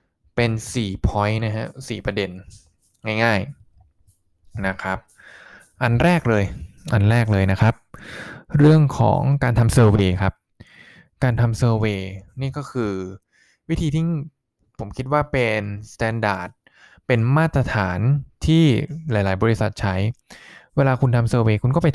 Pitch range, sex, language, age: 105-130 Hz, male, Thai, 20-39